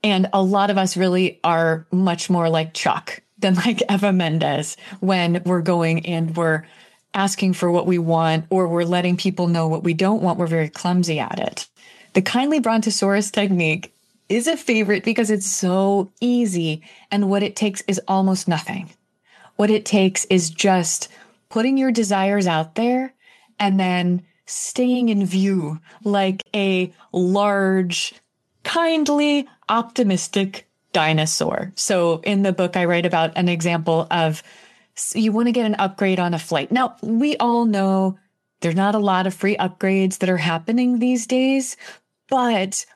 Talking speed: 160 wpm